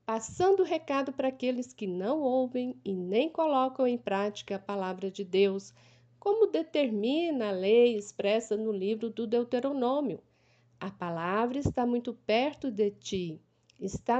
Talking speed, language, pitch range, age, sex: 145 wpm, Portuguese, 195-255 Hz, 50-69, female